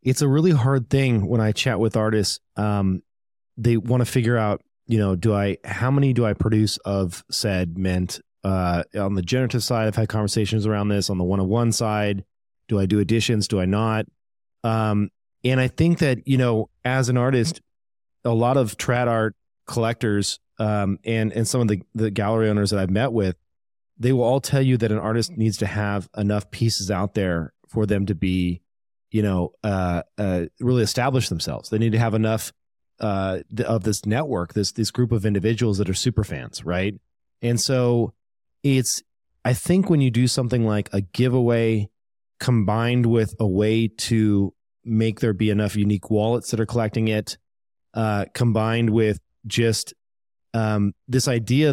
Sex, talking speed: male, 180 wpm